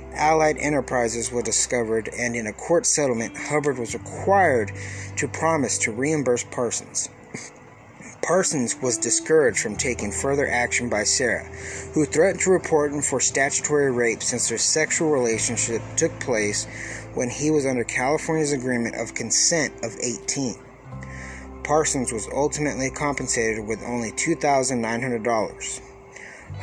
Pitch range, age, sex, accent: 110-140 Hz, 30-49, male, American